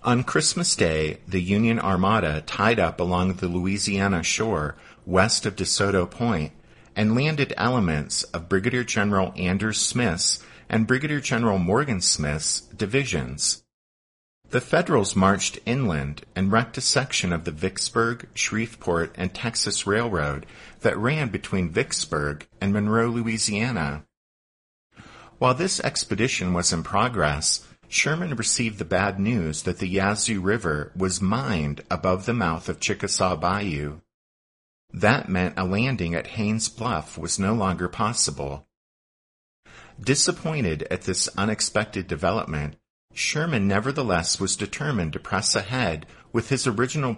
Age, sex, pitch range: 50-69, male, 90-115 Hz